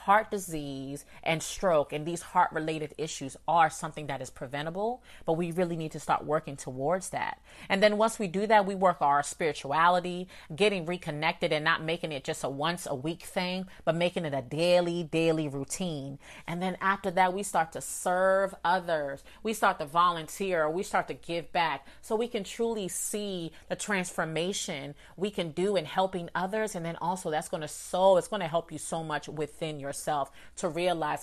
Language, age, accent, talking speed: English, 30-49, American, 195 wpm